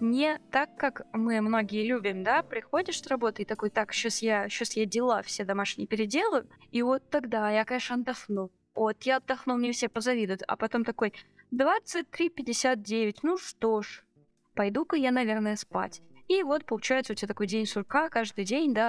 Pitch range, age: 210-265 Hz, 20-39